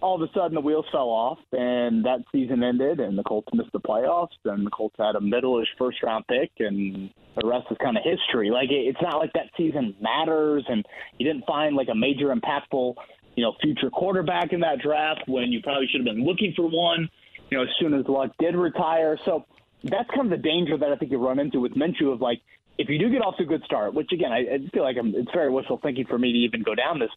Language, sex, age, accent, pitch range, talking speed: English, male, 30-49, American, 125-170 Hz, 255 wpm